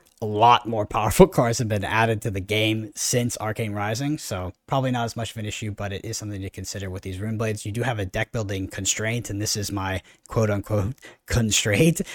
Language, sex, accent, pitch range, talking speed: English, male, American, 100-130 Hz, 220 wpm